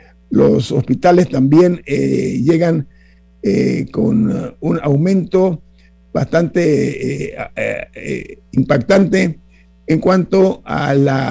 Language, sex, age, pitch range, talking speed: Spanish, male, 50-69, 130-180 Hz, 95 wpm